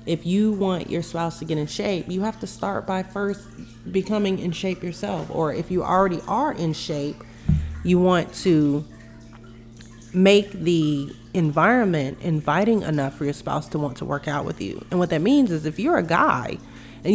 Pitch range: 150-195 Hz